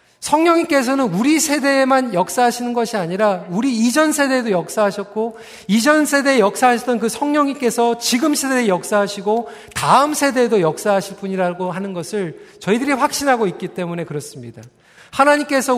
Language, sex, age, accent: Korean, male, 40-59, native